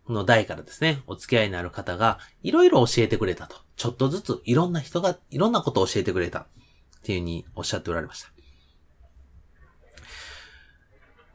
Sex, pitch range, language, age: male, 90-145 Hz, Japanese, 30-49